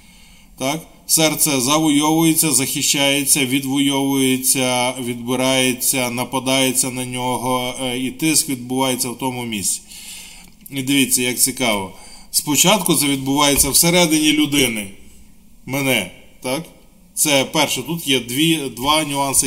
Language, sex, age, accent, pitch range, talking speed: Ukrainian, male, 20-39, native, 130-165 Hz, 100 wpm